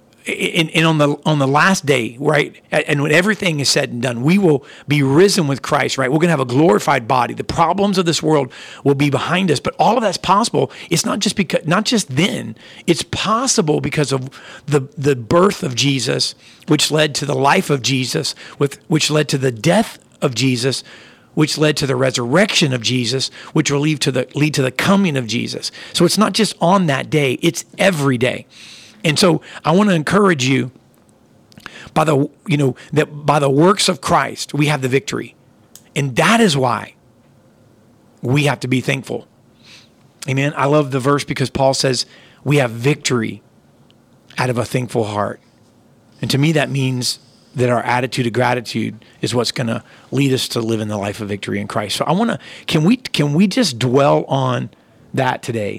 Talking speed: 200 wpm